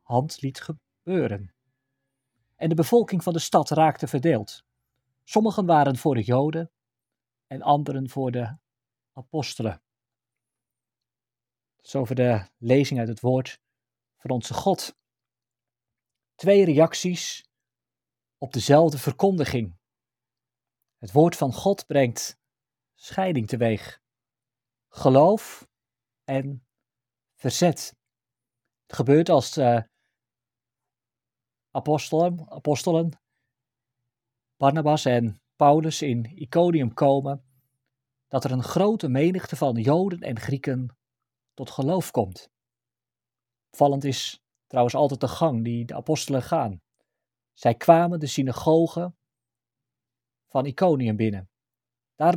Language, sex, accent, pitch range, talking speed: Dutch, male, Dutch, 120-155 Hz, 100 wpm